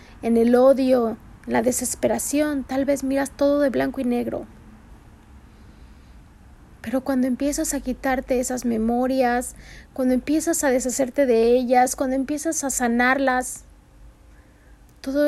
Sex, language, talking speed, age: female, Spanish, 125 wpm, 30-49